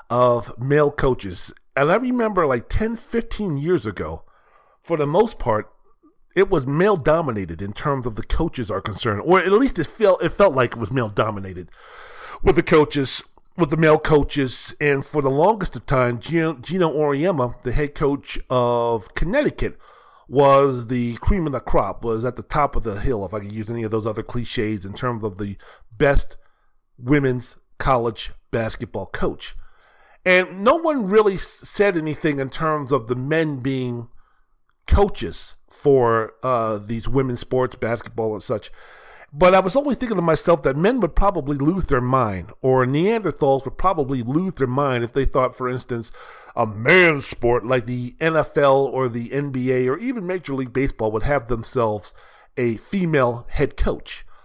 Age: 40-59